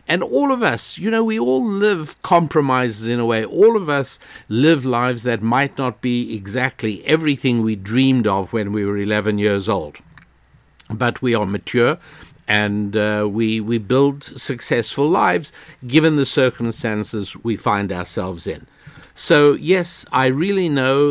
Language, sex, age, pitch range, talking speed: English, male, 60-79, 110-135 Hz, 160 wpm